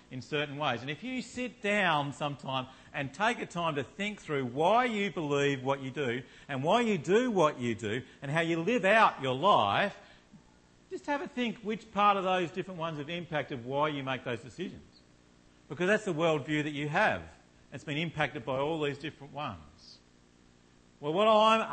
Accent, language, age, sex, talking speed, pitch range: Australian, English, 50-69, male, 195 wpm, 120-175 Hz